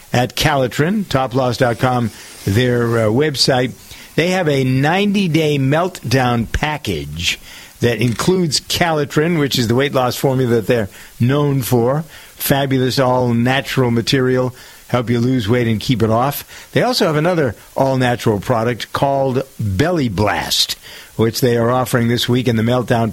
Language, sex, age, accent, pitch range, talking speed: English, male, 50-69, American, 120-145 Hz, 140 wpm